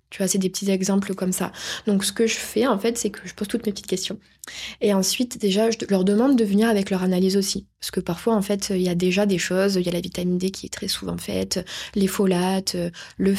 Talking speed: 270 wpm